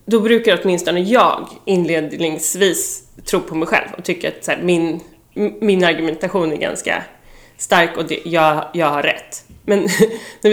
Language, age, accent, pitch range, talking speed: English, 30-49, Swedish, 165-220 Hz, 160 wpm